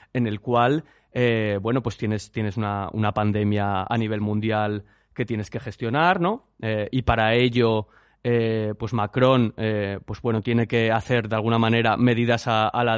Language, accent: Spanish, Spanish